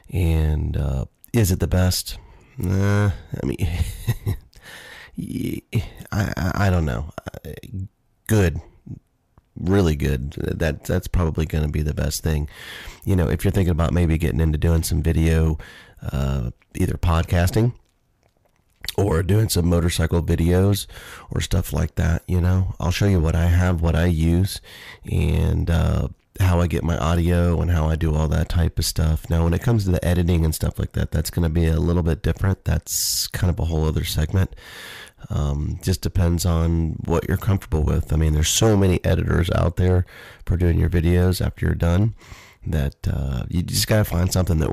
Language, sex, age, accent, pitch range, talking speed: English, male, 30-49, American, 80-95 Hz, 180 wpm